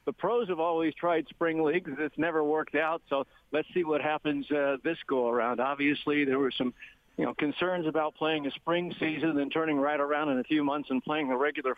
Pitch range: 135-155 Hz